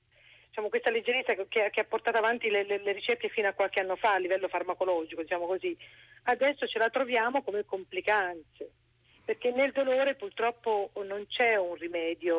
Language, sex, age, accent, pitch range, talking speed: Italian, female, 40-59, native, 195-250 Hz, 180 wpm